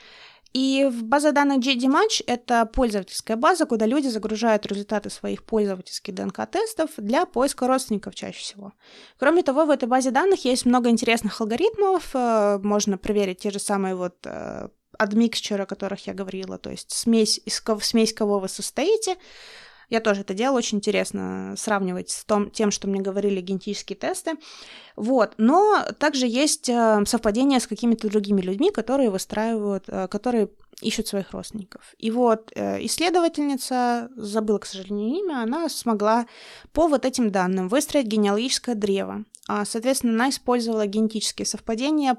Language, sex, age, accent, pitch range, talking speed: Russian, female, 20-39, native, 205-260 Hz, 140 wpm